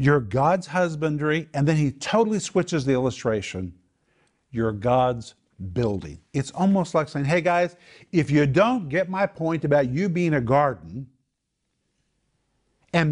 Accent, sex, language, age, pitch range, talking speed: American, male, English, 50-69, 115-155 Hz, 140 wpm